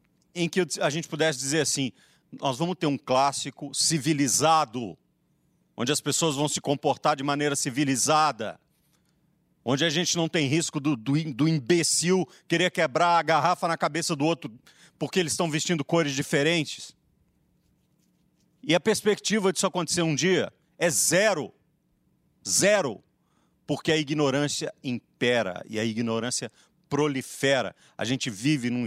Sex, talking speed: male, 140 wpm